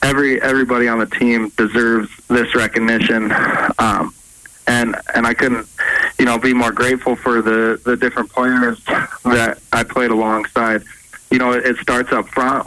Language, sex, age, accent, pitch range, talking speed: English, male, 20-39, American, 115-125 Hz, 160 wpm